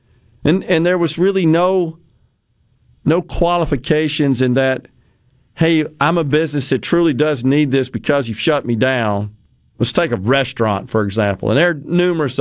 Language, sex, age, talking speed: English, male, 50-69, 165 wpm